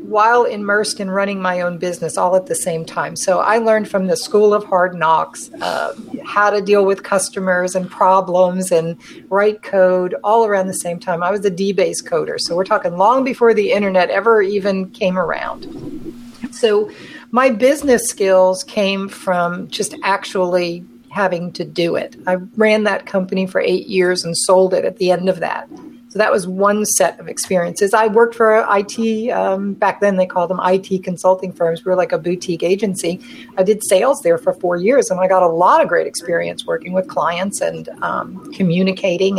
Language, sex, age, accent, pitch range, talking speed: English, female, 50-69, American, 185-230 Hz, 195 wpm